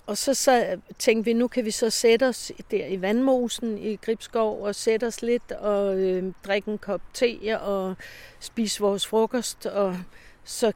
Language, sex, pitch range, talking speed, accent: Danish, female, 185-225 Hz, 180 wpm, native